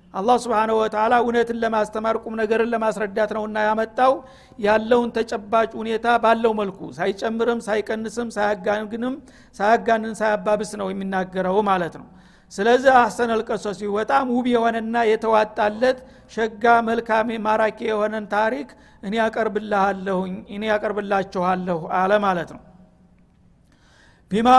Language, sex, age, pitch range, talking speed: Amharic, male, 50-69, 210-235 Hz, 110 wpm